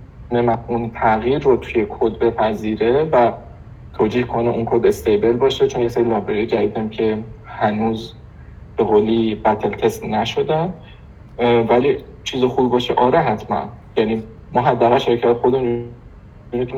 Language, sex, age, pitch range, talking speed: Persian, male, 50-69, 110-125 Hz, 140 wpm